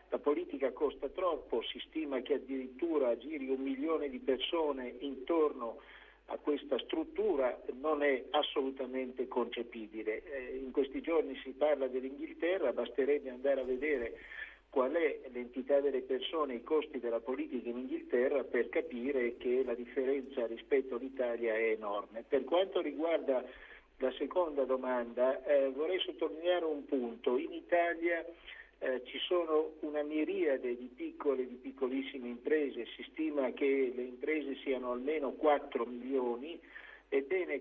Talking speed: 140 wpm